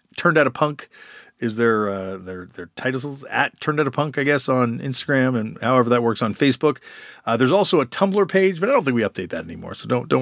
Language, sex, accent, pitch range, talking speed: English, male, American, 130-195 Hz, 245 wpm